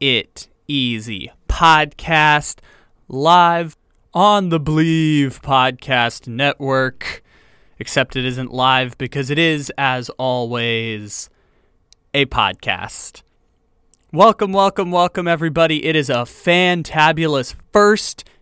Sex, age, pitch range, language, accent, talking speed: male, 20-39, 120-150 Hz, English, American, 95 wpm